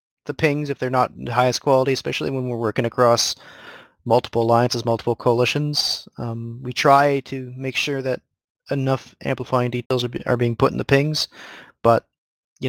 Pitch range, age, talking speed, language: 110-130 Hz, 30-49, 170 wpm, English